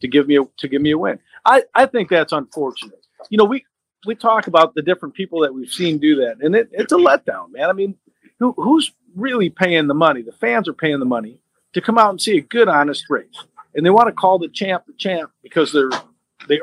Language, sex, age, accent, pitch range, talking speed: English, male, 50-69, American, 145-210 Hz, 250 wpm